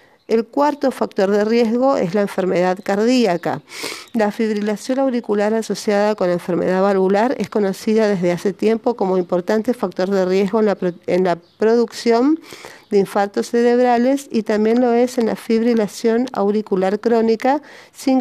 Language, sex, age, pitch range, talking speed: Spanish, female, 50-69, 190-230 Hz, 145 wpm